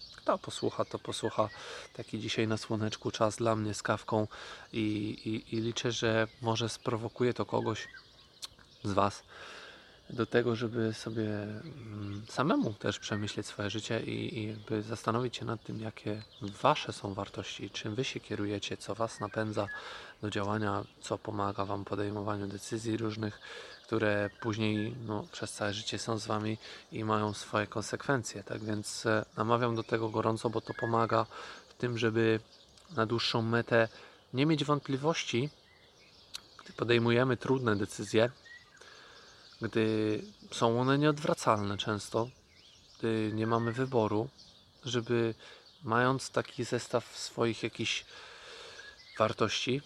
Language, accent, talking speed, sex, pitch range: Polish, native, 130 wpm, male, 105-120 Hz